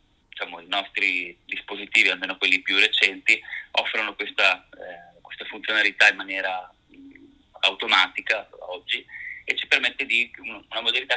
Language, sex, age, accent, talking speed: Italian, male, 30-49, native, 130 wpm